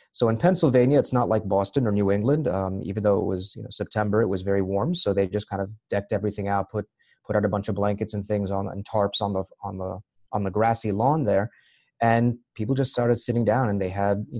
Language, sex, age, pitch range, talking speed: English, male, 30-49, 100-115 Hz, 255 wpm